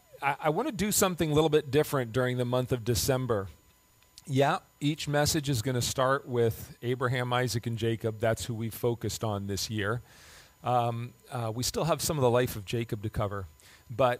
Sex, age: male, 40-59